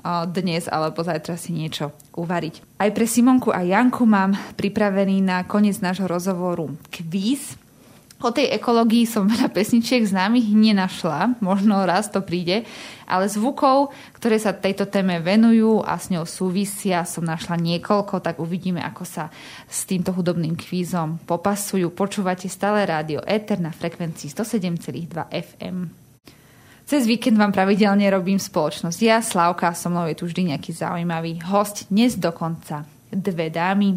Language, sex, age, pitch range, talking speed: Slovak, female, 20-39, 170-210 Hz, 145 wpm